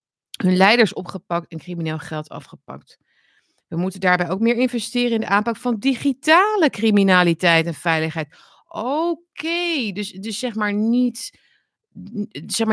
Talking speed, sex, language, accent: 125 wpm, female, Dutch, Dutch